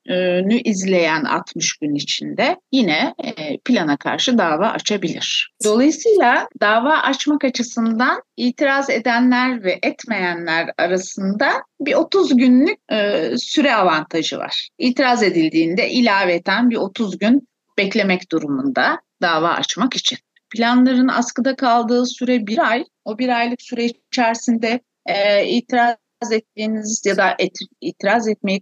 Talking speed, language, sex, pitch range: 115 wpm, Turkish, female, 180-250 Hz